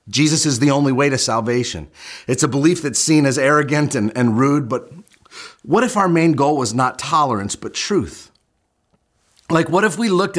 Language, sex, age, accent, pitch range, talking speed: English, male, 40-59, American, 125-170 Hz, 190 wpm